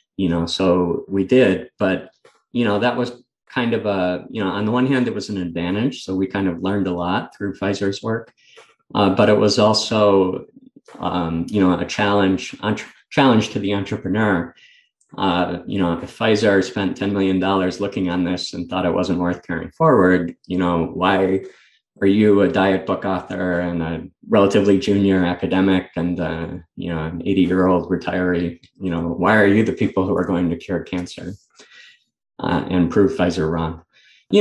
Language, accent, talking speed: English, American, 190 wpm